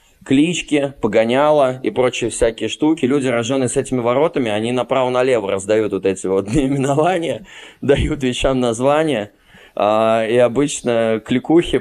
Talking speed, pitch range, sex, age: 120 wpm, 110-140 Hz, male, 20-39